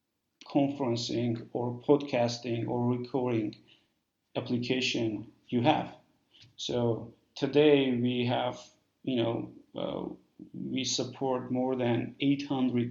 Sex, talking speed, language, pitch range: male, 95 wpm, English, 115-130 Hz